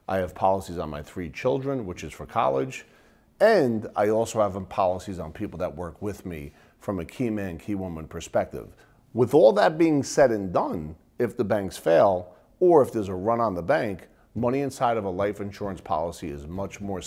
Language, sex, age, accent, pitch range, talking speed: English, male, 40-59, American, 90-120 Hz, 205 wpm